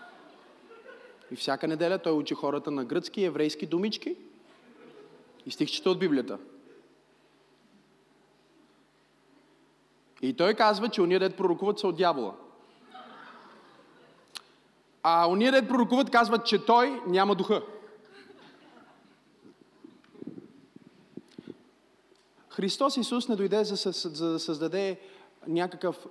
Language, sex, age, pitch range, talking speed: Bulgarian, male, 30-49, 170-210 Hz, 100 wpm